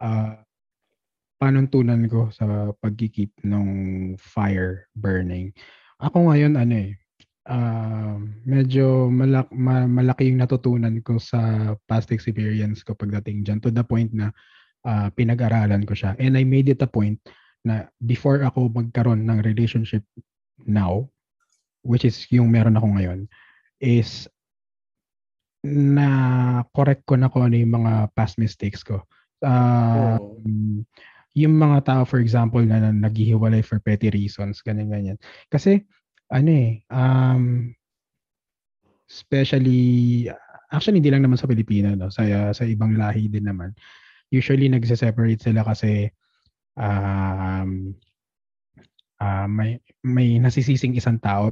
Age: 20-39